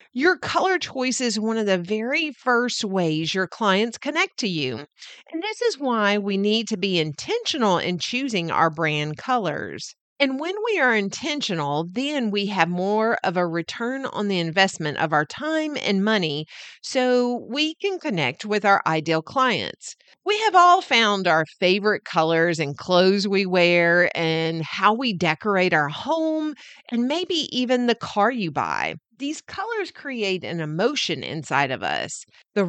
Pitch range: 170-260 Hz